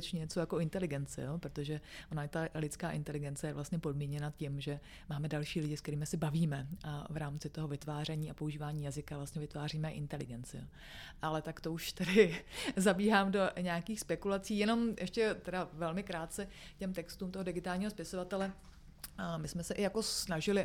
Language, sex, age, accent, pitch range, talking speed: Czech, female, 30-49, native, 160-180 Hz, 170 wpm